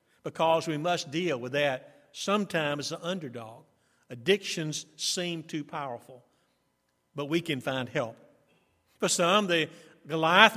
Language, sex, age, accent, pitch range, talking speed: English, male, 50-69, American, 150-190 Hz, 130 wpm